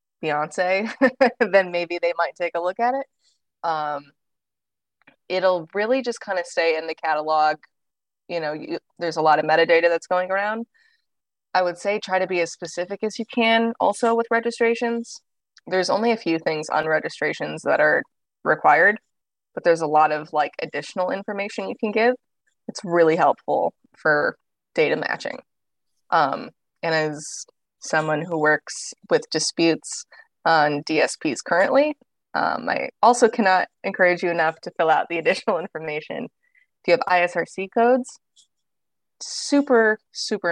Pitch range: 160-235 Hz